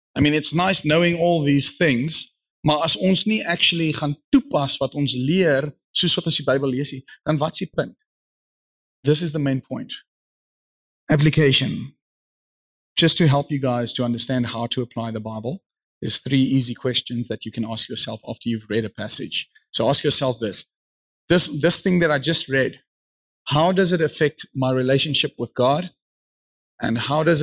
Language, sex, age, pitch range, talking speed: English, male, 30-49, 125-160 Hz, 165 wpm